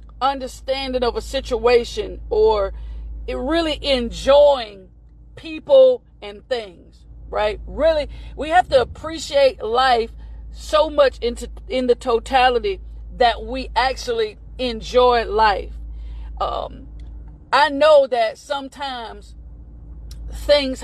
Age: 40-59